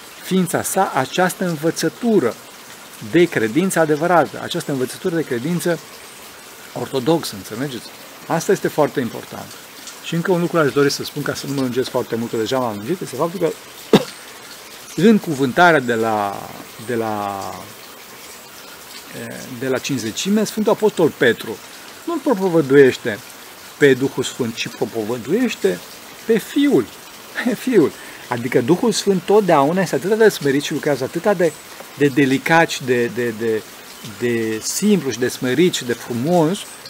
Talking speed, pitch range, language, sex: 135 wpm, 130-200 Hz, Romanian, male